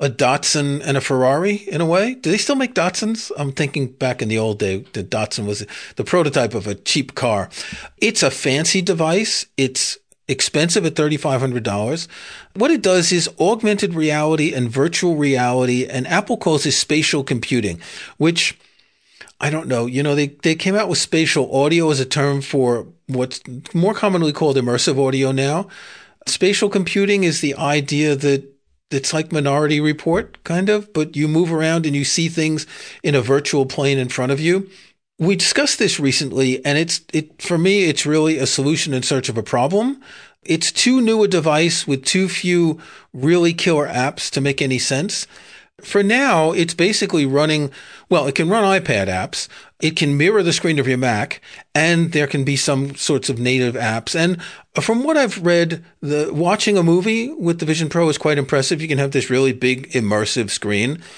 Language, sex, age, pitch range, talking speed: English, male, 40-59, 135-175 Hz, 185 wpm